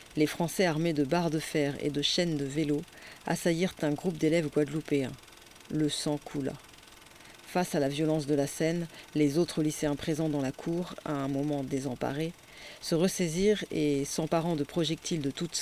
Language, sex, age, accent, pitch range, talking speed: French, female, 40-59, French, 145-170 Hz, 175 wpm